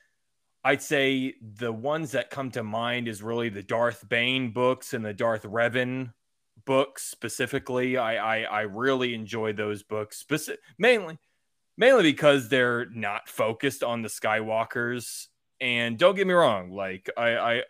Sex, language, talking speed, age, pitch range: male, English, 155 wpm, 20-39, 110-135 Hz